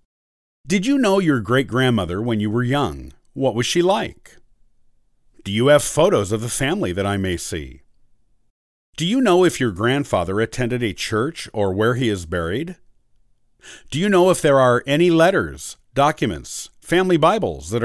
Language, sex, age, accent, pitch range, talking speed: English, male, 50-69, American, 105-150 Hz, 170 wpm